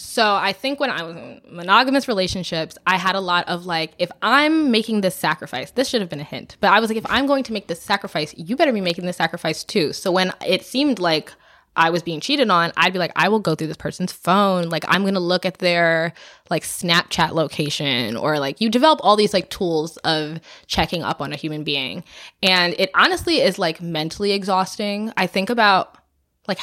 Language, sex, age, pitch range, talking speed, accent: English, female, 20-39, 160-200 Hz, 225 wpm, American